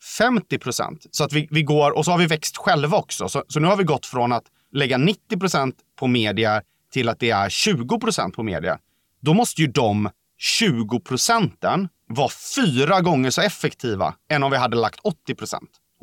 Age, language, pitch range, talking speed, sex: 30-49, Swedish, 120-190 Hz, 175 wpm, male